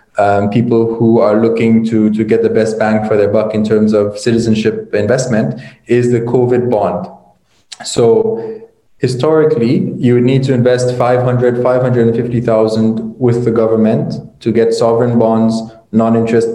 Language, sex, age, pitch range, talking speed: English, male, 20-39, 115-135 Hz, 145 wpm